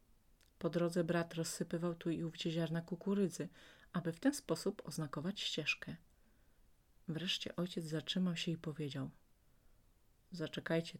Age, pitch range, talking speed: 30-49, 150-185 Hz, 120 wpm